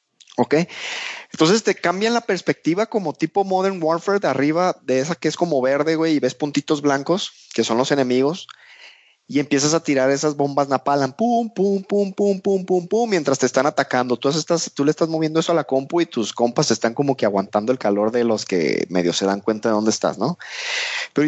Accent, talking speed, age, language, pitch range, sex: Mexican, 210 wpm, 30-49, Spanish, 135-180 Hz, male